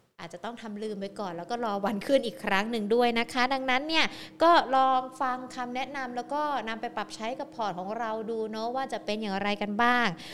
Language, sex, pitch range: Thai, female, 205-260 Hz